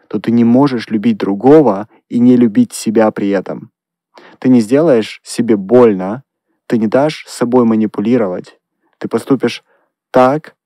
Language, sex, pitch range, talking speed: Russian, male, 105-125 Hz, 135 wpm